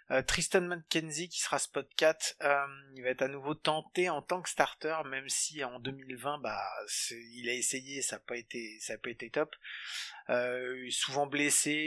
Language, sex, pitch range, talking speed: French, male, 125-150 Hz, 185 wpm